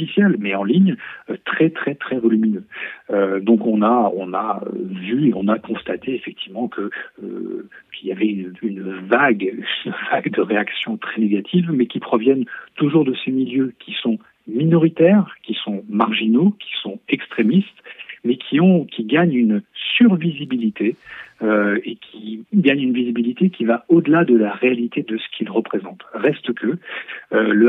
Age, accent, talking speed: 40-59, French, 150 wpm